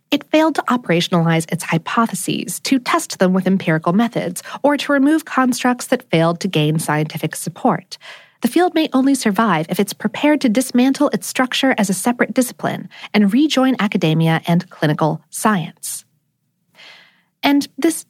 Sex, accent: female, American